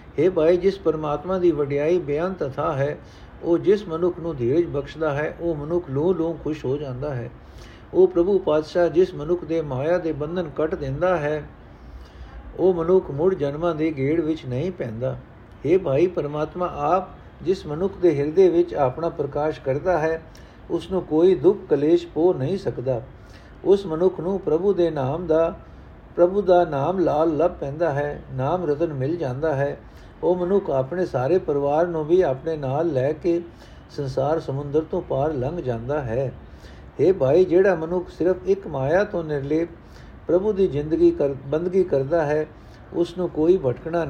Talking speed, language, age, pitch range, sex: 165 wpm, Punjabi, 60-79, 140-180 Hz, male